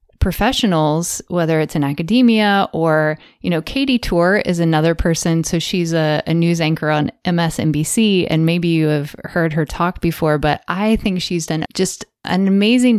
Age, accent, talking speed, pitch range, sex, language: 30-49, American, 170 wpm, 160-210 Hz, female, English